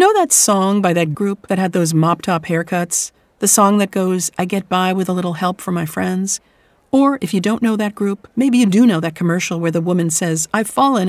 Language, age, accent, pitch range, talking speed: English, 40-59, American, 175-220 Hz, 240 wpm